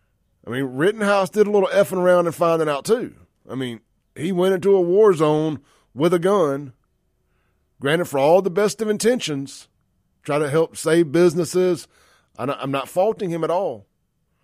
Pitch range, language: 115-170 Hz, English